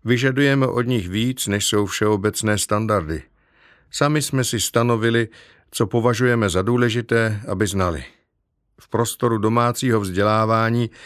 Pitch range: 105-130 Hz